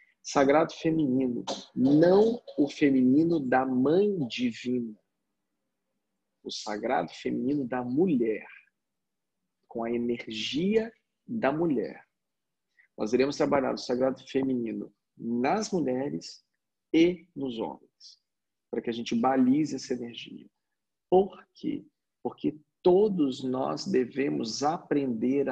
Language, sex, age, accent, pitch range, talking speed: Portuguese, male, 40-59, Brazilian, 125-180 Hz, 100 wpm